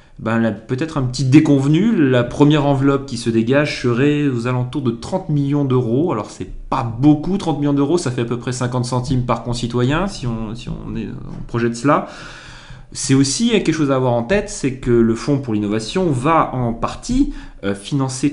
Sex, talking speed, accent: male, 200 wpm, French